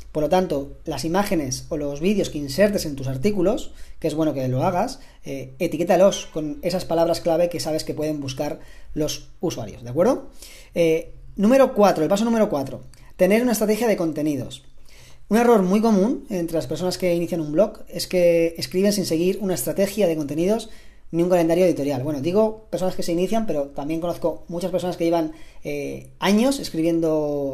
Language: Spanish